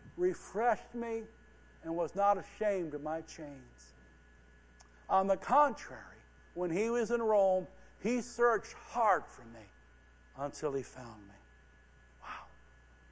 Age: 60-79